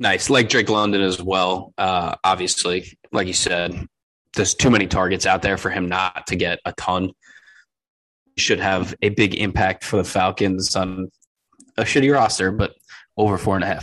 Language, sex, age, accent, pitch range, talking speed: English, male, 20-39, American, 95-115 Hz, 180 wpm